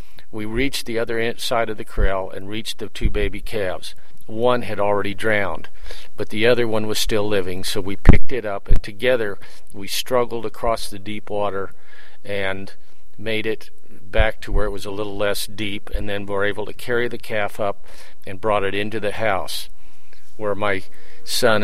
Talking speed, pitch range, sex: 190 wpm, 95-110 Hz, male